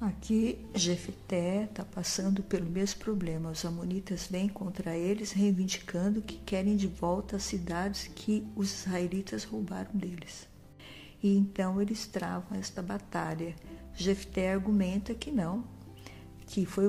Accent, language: Brazilian, Portuguese